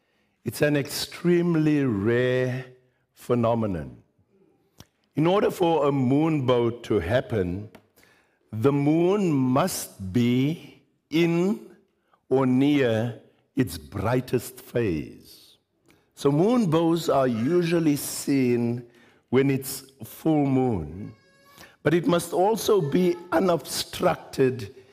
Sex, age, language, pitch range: male, 60-79, English, 120-150 Hz